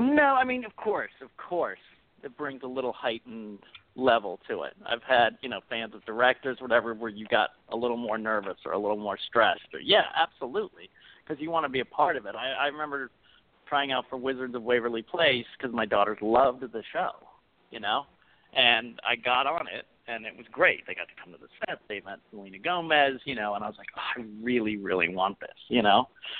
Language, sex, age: English, male, 50-69